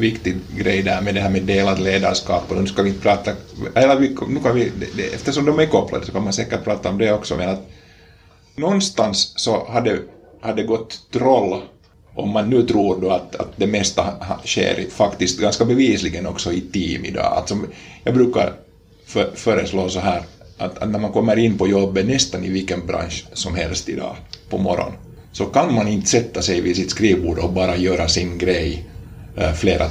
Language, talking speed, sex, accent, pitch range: Swedish, 195 wpm, male, Finnish, 90-100 Hz